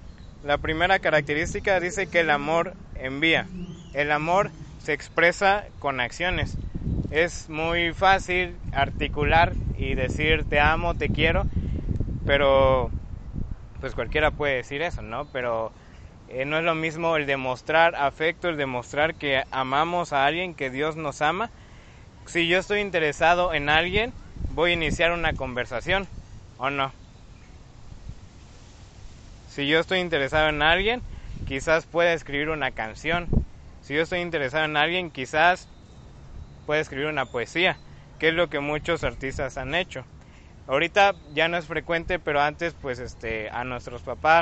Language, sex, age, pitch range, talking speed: Spanish, male, 20-39, 120-165 Hz, 140 wpm